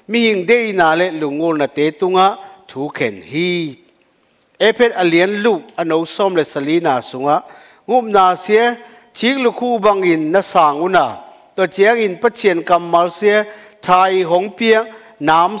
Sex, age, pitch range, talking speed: male, 50-69, 170-230 Hz, 135 wpm